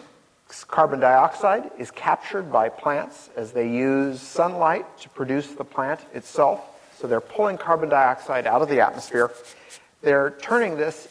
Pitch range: 135-170 Hz